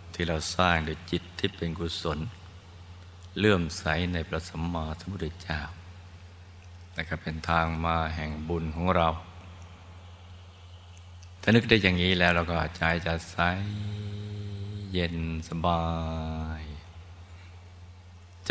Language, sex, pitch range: Thai, male, 80-90 Hz